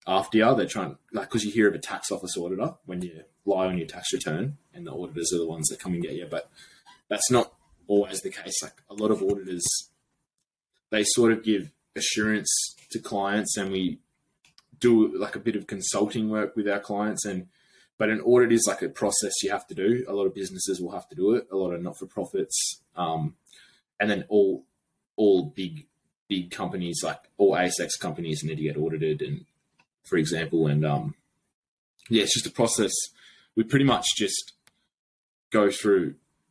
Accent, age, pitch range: Australian, 20-39, 90-110 Hz